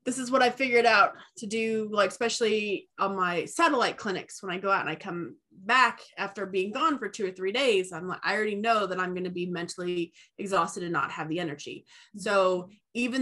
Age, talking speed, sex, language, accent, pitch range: 20-39, 220 wpm, female, English, American, 180-220 Hz